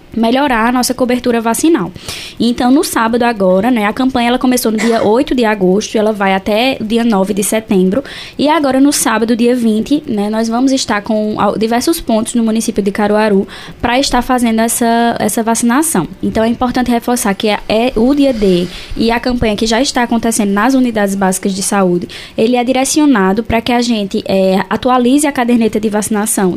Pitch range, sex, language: 205-250 Hz, female, Portuguese